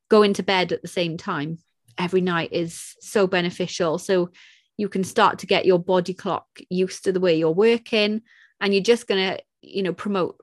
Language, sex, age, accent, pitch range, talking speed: English, female, 30-49, British, 180-205 Hz, 200 wpm